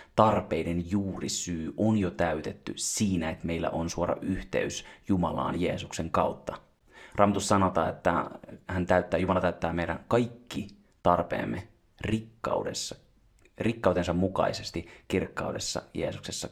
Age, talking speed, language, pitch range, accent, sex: 30-49, 105 wpm, Finnish, 85-100 Hz, native, male